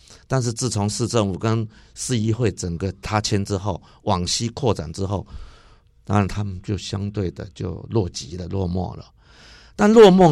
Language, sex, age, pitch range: Chinese, male, 50-69, 95-120 Hz